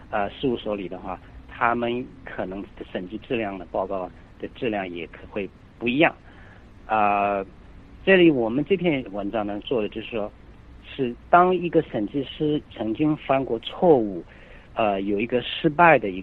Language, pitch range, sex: Chinese, 100-145 Hz, male